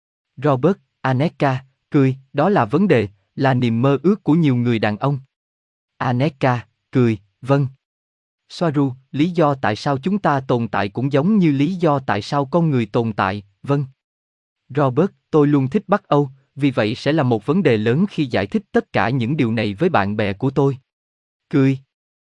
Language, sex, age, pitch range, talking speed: Vietnamese, male, 20-39, 110-150 Hz, 185 wpm